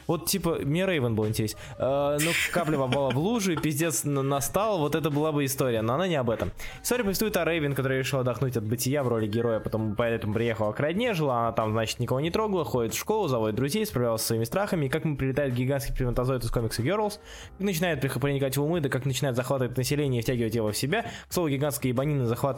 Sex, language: male, Russian